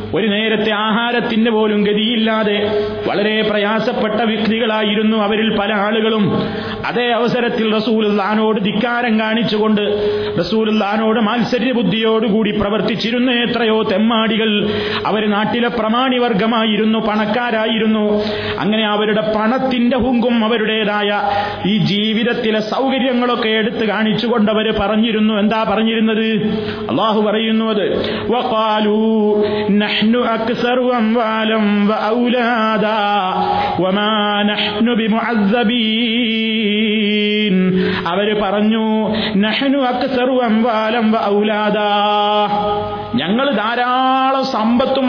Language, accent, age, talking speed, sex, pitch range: Malayalam, native, 30-49, 65 wpm, male, 210-235 Hz